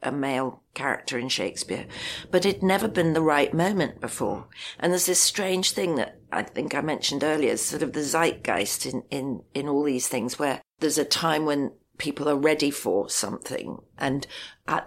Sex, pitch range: female, 130-155 Hz